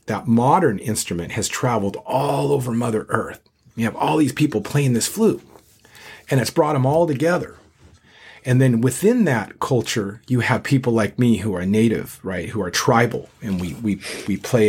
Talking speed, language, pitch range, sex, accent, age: 185 wpm, English, 95-125 Hz, male, American, 40-59